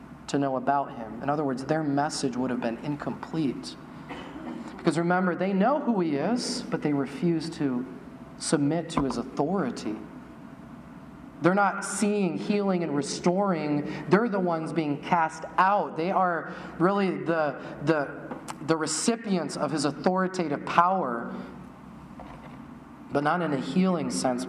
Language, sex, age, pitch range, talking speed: English, male, 30-49, 150-185 Hz, 135 wpm